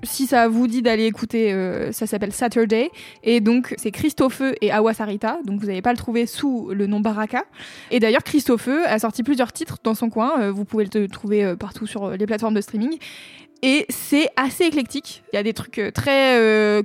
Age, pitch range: 20-39, 215-255 Hz